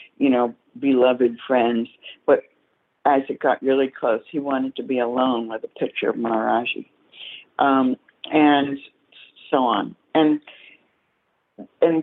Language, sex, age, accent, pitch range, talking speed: English, female, 60-79, American, 130-170 Hz, 130 wpm